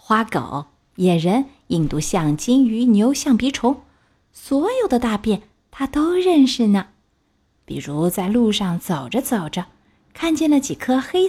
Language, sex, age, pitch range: Chinese, female, 30-49, 185-265 Hz